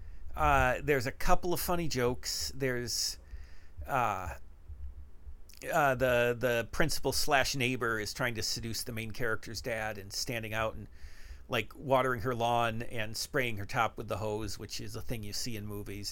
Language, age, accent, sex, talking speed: English, 50-69, American, male, 170 wpm